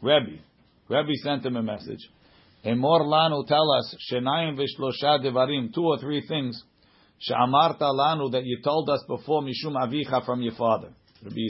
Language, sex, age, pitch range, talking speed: English, male, 50-69, 125-165 Hz, 150 wpm